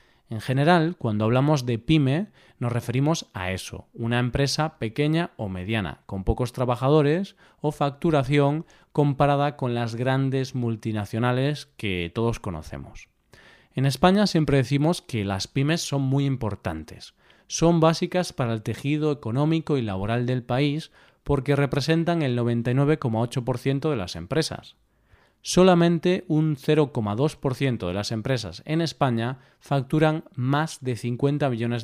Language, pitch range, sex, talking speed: Spanish, 115-155 Hz, male, 130 wpm